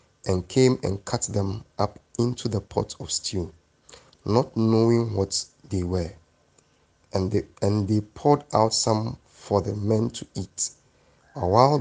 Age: 50-69